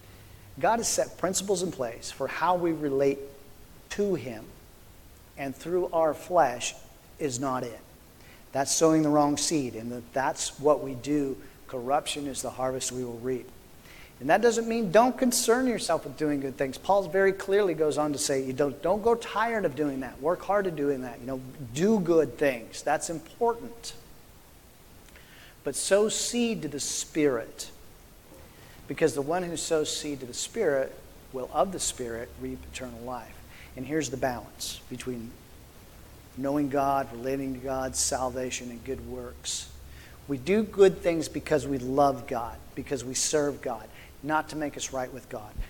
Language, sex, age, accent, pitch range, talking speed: English, male, 40-59, American, 130-165 Hz, 165 wpm